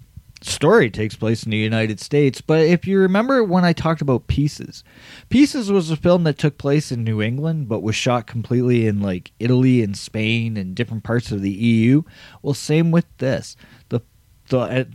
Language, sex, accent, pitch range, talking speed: English, male, American, 105-145 Hz, 190 wpm